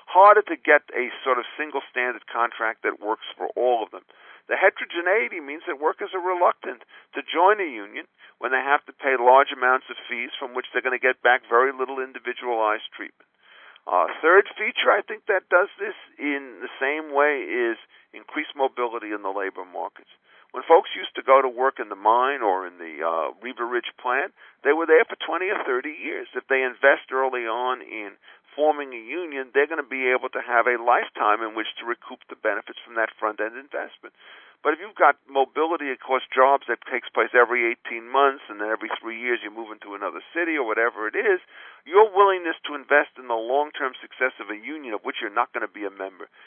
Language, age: English, 50-69